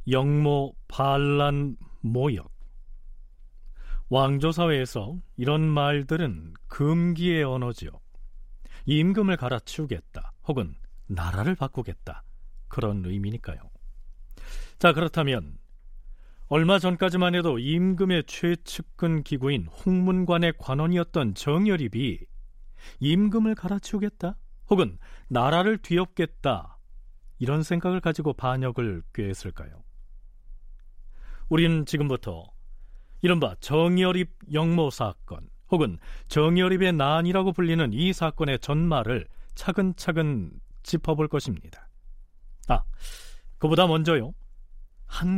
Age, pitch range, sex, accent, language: 40-59, 105-170 Hz, male, native, Korean